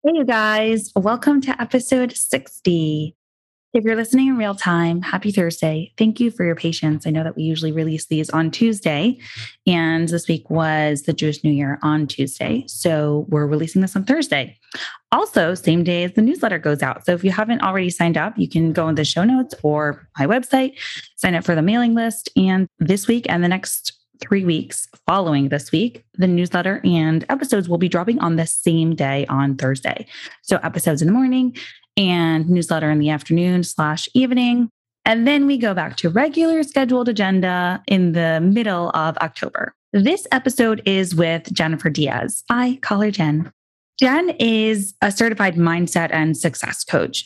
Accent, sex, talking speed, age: American, female, 185 wpm, 20-39